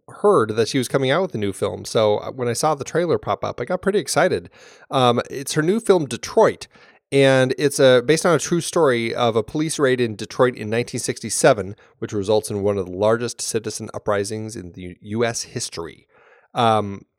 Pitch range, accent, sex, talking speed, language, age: 105-130 Hz, American, male, 205 wpm, English, 30-49